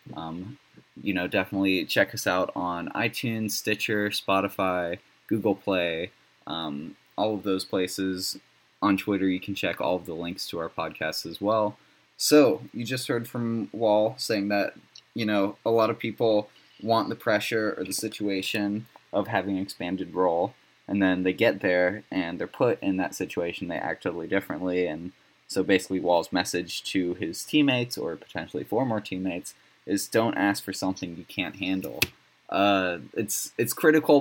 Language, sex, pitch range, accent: English, male, 95-110 Hz, American